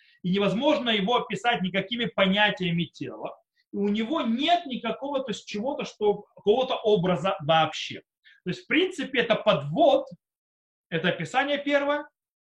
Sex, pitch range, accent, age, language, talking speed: male, 175-250 Hz, native, 30-49, Russian, 135 wpm